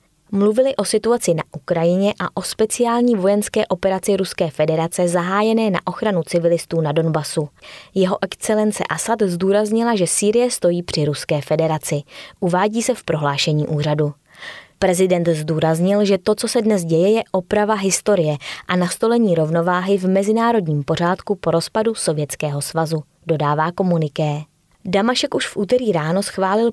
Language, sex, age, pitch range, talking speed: Czech, female, 20-39, 160-210 Hz, 140 wpm